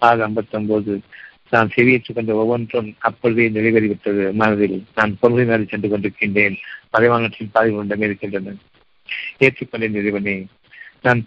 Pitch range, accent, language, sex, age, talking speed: 105-120 Hz, native, Tamil, male, 50-69, 100 wpm